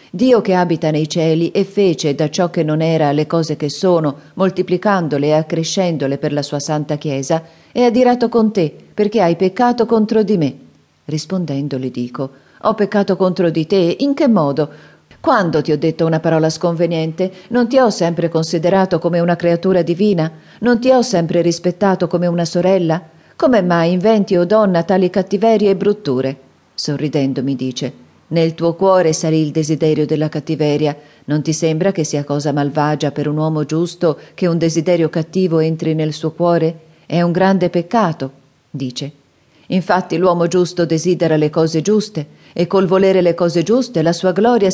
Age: 40-59